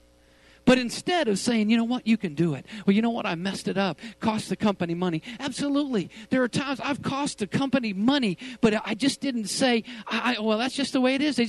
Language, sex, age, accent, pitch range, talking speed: English, male, 50-69, American, 180-255 Hz, 235 wpm